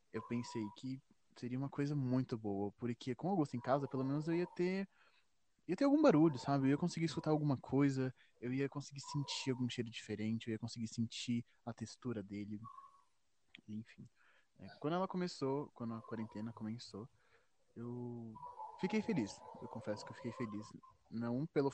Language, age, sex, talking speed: Portuguese, 20-39, male, 175 wpm